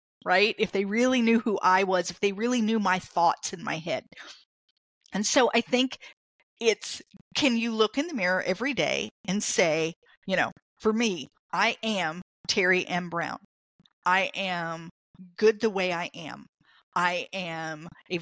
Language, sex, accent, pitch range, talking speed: English, female, American, 180-230 Hz, 170 wpm